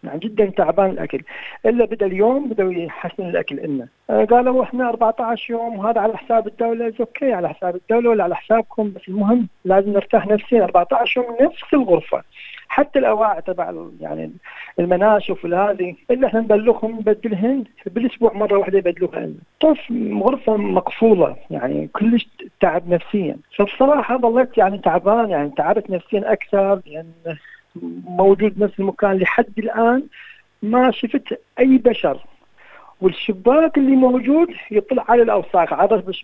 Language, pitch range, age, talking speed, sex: Arabic, 185-235 Hz, 40-59, 135 wpm, male